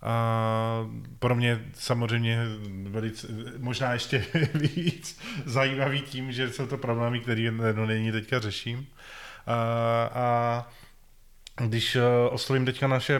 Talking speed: 105 wpm